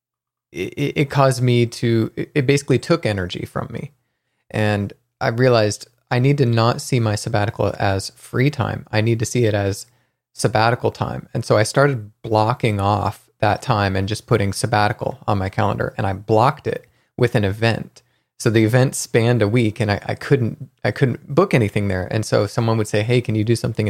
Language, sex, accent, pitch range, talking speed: English, male, American, 105-130 Hz, 195 wpm